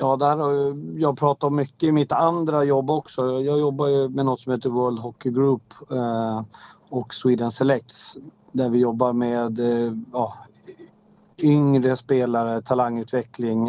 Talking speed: 130 wpm